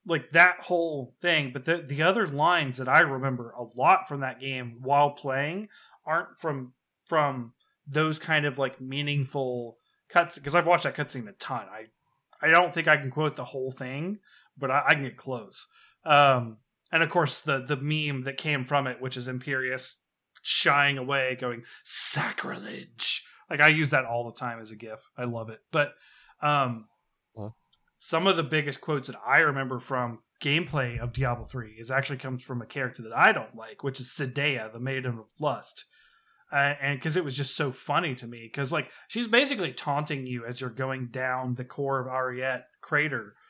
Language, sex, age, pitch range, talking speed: English, male, 20-39, 125-155 Hz, 190 wpm